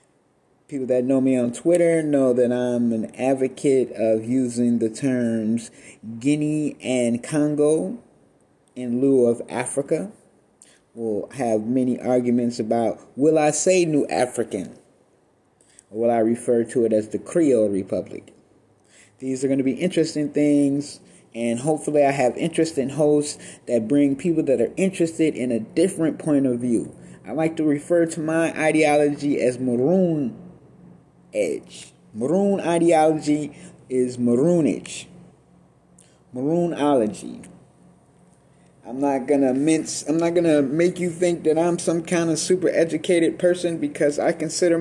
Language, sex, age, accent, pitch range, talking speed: English, male, 20-39, American, 125-165 Hz, 135 wpm